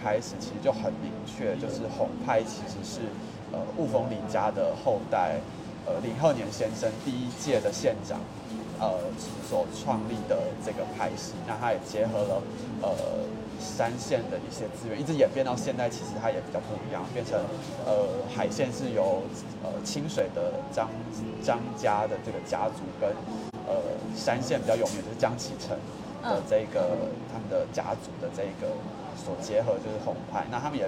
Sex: male